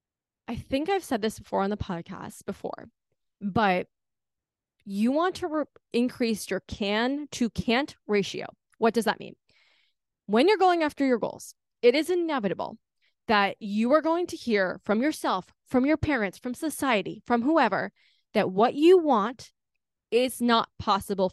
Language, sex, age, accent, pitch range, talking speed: English, female, 20-39, American, 215-295 Hz, 155 wpm